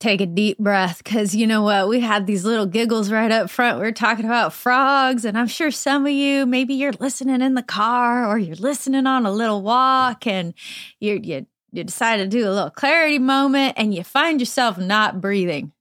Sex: female